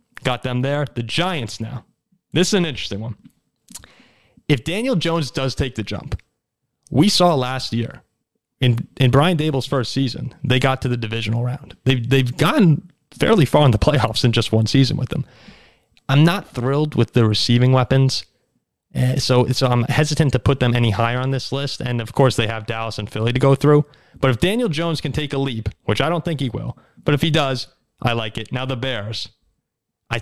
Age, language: 30-49, English